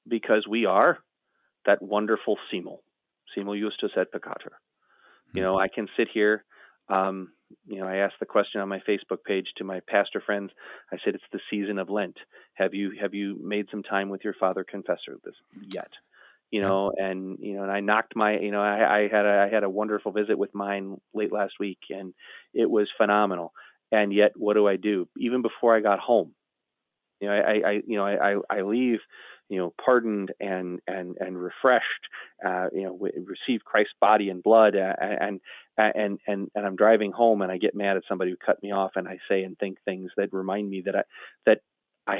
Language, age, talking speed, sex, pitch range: English, 30-49, 210 wpm, male, 95-105 Hz